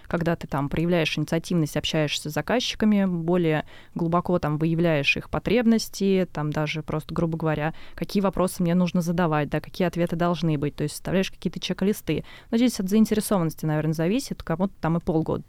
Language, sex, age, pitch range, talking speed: Russian, female, 20-39, 160-195 Hz, 170 wpm